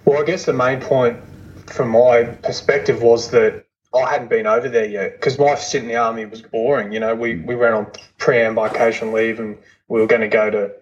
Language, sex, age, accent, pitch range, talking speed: English, male, 20-39, Australian, 110-135 Hz, 225 wpm